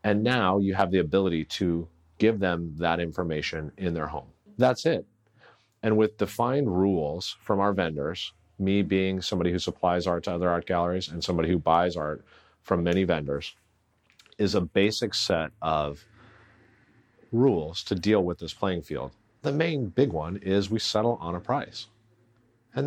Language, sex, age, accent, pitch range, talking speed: English, male, 40-59, American, 85-110 Hz, 170 wpm